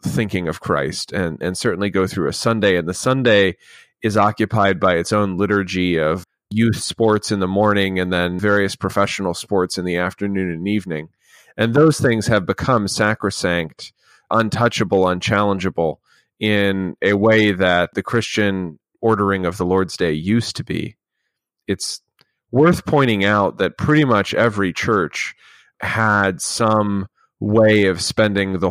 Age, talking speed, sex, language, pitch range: 30-49, 150 wpm, male, English, 95-110 Hz